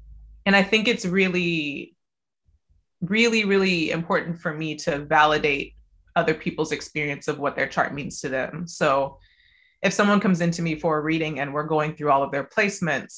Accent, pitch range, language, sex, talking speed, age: American, 150-185 Hz, English, female, 180 wpm, 20-39